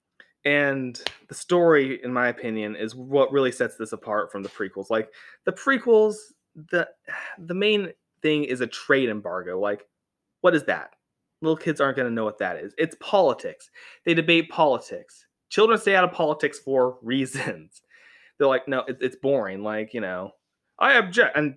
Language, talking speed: English, 175 wpm